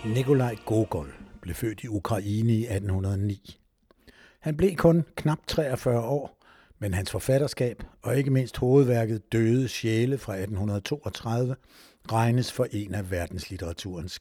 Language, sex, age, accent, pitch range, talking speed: Danish, male, 60-79, native, 105-135 Hz, 125 wpm